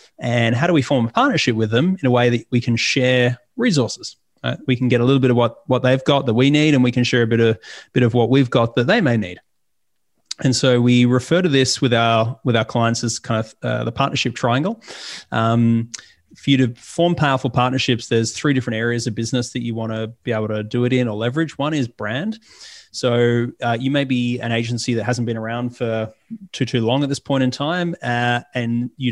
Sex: male